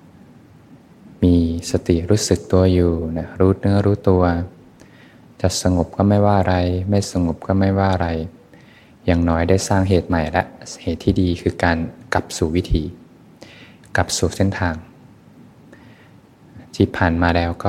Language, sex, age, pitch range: Thai, male, 20-39, 85-95 Hz